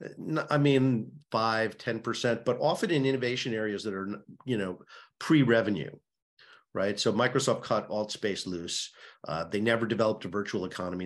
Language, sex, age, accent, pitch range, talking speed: English, male, 50-69, American, 100-130 Hz, 150 wpm